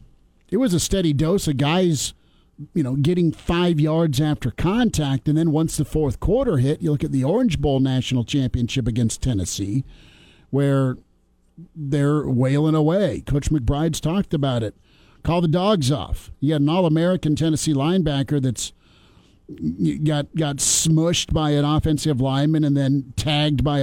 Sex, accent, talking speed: male, American, 155 wpm